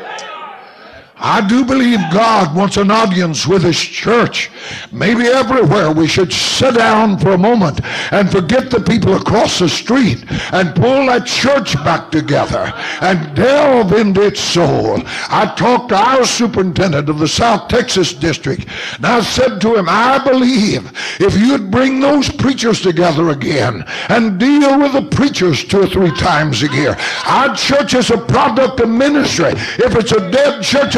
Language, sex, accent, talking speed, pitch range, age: English, male, American, 165 wpm, 190-265 Hz, 60-79